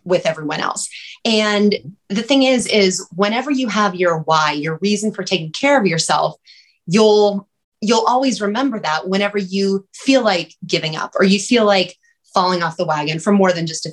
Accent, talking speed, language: American, 190 wpm, English